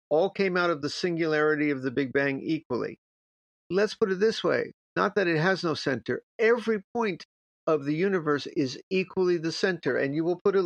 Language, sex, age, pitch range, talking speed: English, male, 50-69, 130-180 Hz, 205 wpm